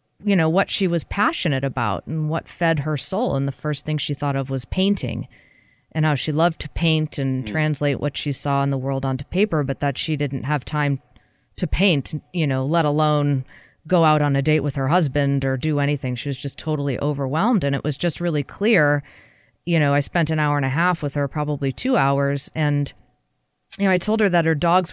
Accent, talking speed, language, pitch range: American, 225 wpm, English, 140-170 Hz